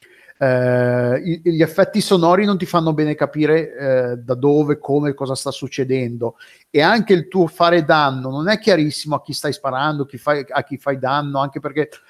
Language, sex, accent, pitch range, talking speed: Italian, male, native, 130-155 Hz, 175 wpm